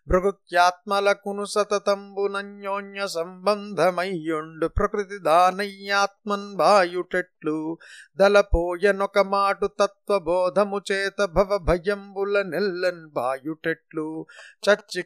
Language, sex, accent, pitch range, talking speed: Telugu, male, native, 165-205 Hz, 50 wpm